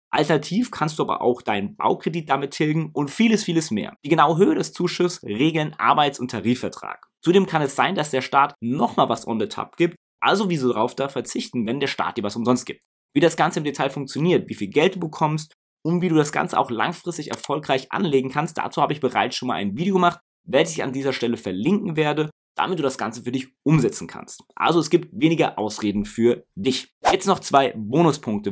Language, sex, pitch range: German, male, 125-170 Hz